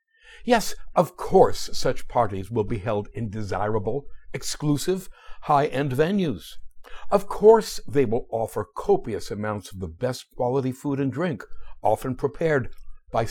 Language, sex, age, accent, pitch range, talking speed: English, male, 60-79, American, 115-165 Hz, 135 wpm